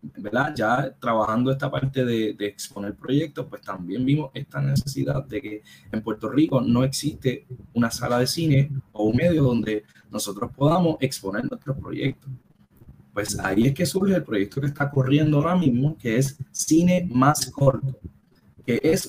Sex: male